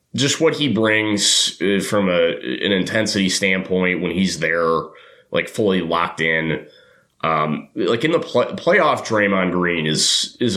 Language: English